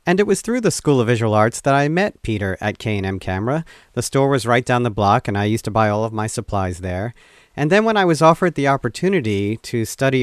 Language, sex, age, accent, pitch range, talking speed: English, male, 40-59, American, 110-150 Hz, 250 wpm